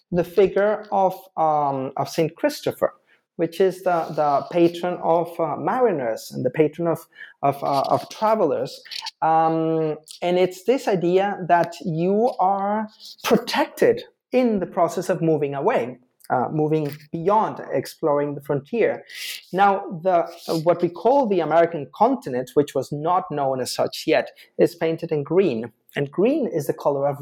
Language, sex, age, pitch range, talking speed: English, male, 30-49, 155-220 Hz, 155 wpm